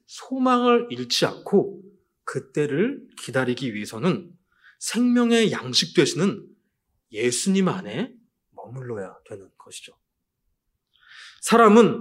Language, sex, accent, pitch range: Korean, male, native, 150-235 Hz